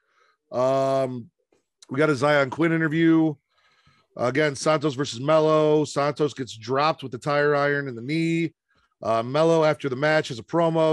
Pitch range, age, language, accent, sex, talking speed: 125-175 Hz, 40-59, English, American, male, 165 wpm